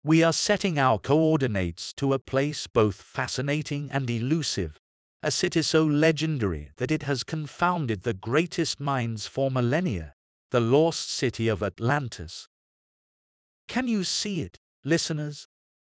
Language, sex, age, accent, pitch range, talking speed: English, male, 50-69, British, 110-155 Hz, 130 wpm